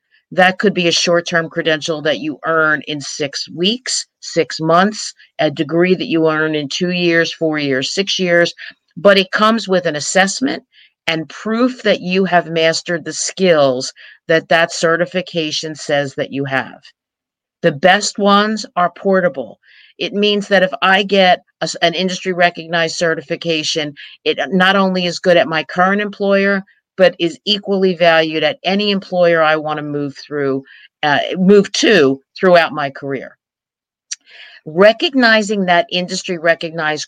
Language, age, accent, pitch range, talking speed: English, 50-69, American, 150-185 Hz, 145 wpm